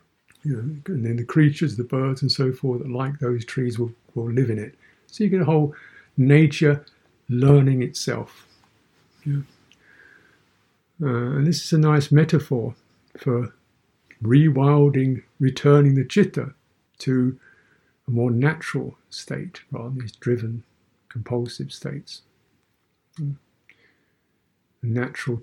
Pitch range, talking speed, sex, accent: 115-140 Hz, 125 wpm, male, British